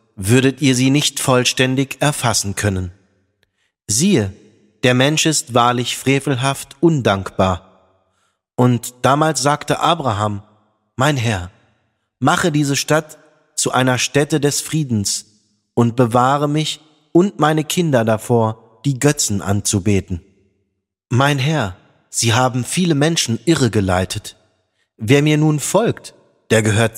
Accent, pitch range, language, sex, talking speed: German, 105-145 Hz, German, male, 115 wpm